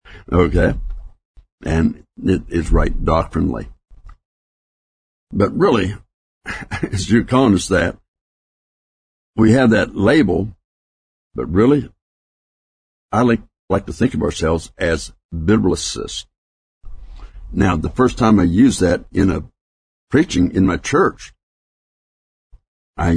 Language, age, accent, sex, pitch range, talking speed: English, 60-79, American, male, 75-100 Hz, 105 wpm